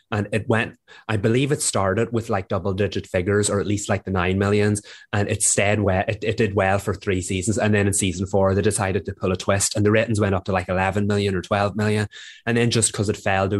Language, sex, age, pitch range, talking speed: English, male, 20-39, 100-110 Hz, 270 wpm